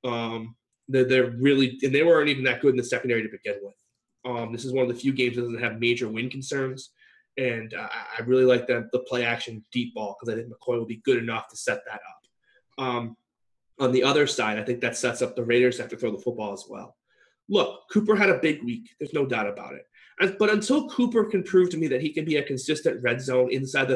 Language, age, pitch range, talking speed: English, 30-49, 125-170 Hz, 255 wpm